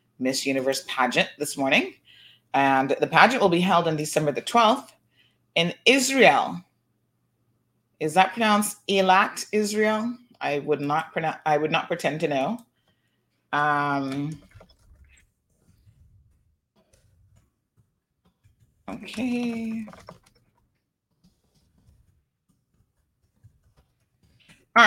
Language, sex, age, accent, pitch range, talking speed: English, female, 30-49, American, 145-200 Hz, 85 wpm